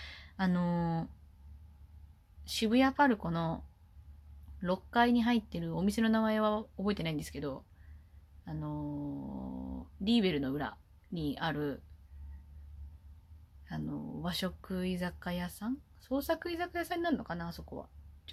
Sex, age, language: female, 20-39, Japanese